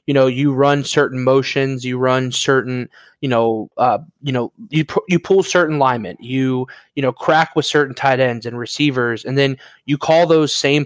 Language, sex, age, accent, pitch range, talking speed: English, male, 20-39, American, 125-150 Hz, 200 wpm